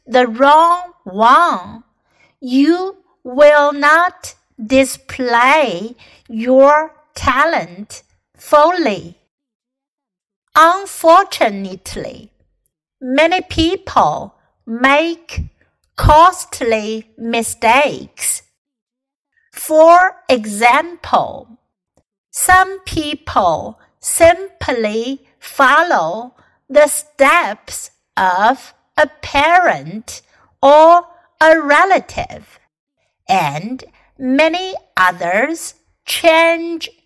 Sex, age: female, 60-79